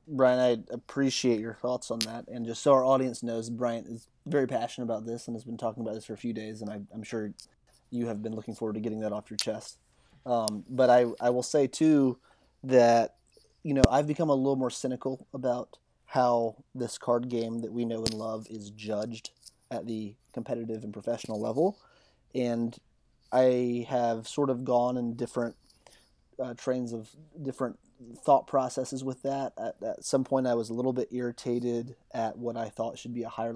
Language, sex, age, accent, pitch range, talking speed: English, male, 30-49, American, 115-130 Hz, 200 wpm